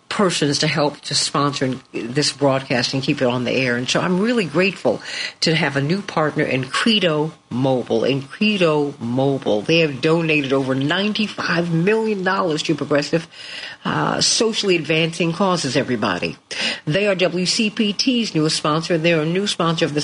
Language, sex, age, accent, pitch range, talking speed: English, female, 50-69, American, 140-190 Hz, 160 wpm